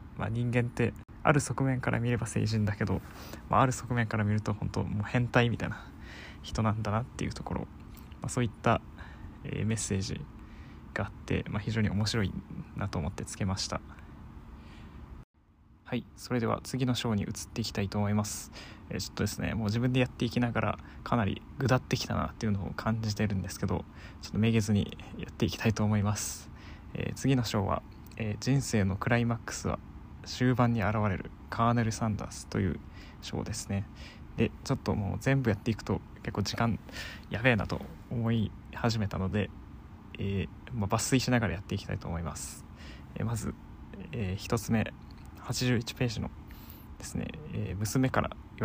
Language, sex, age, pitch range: Japanese, male, 20-39, 95-115 Hz